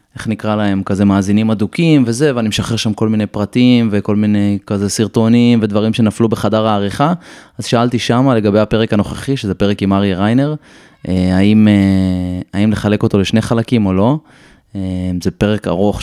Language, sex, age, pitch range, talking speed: Hebrew, male, 20-39, 100-115 Hz, 160 wpm